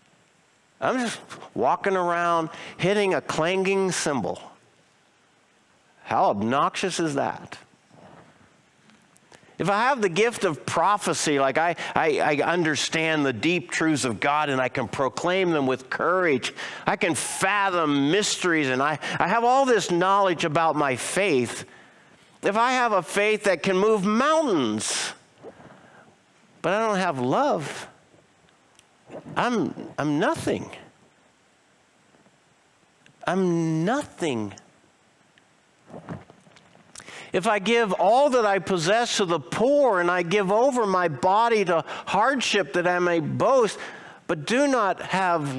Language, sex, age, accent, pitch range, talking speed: English, male, 50-69, American, 160-215 Hz, 125 wpm